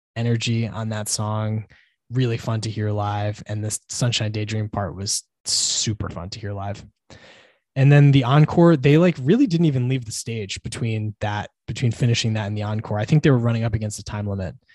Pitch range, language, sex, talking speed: 110-130 Hz, English, male, 205 wpm